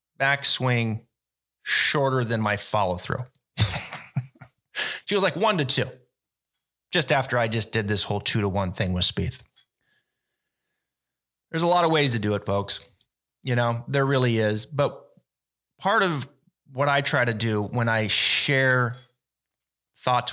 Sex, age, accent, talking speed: male, 30-49, American, 150 wpm